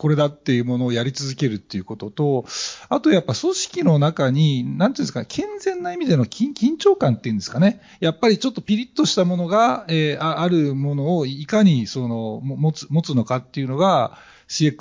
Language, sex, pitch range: Japanese, male, 130-185 Hz